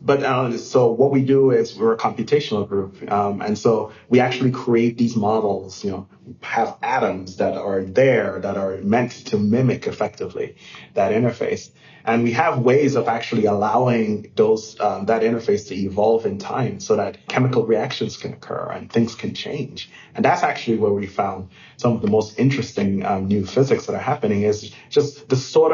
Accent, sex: American, male